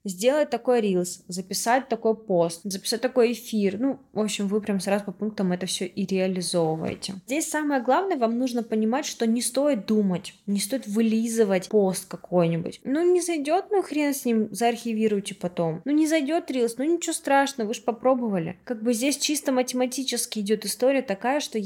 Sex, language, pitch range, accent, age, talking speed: female, Russian, 195-250 Hz, native, 20-39, 175 wpm